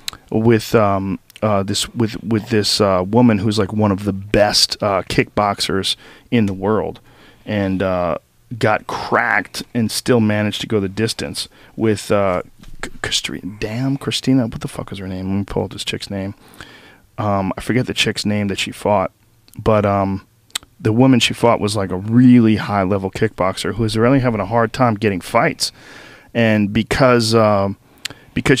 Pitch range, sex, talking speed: 100-120 Hz, male, 180 wpm